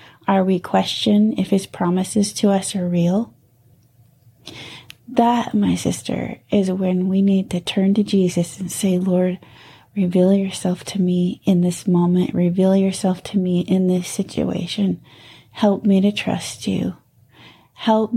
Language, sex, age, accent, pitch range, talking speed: English, female, 30-49, American, 175-200 Hz, 145 wpm